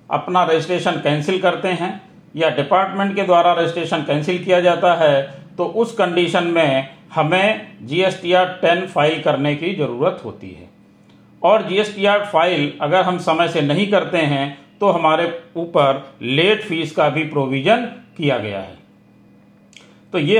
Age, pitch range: 40-59, 150-190 Hz